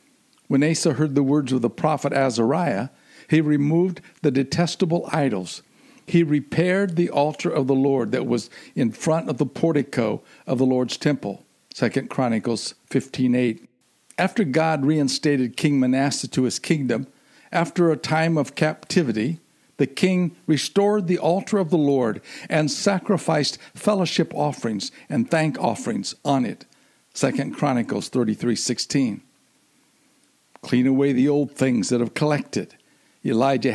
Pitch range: 130-160 Hz